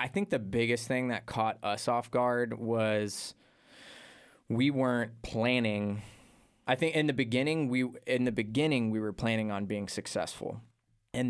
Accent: American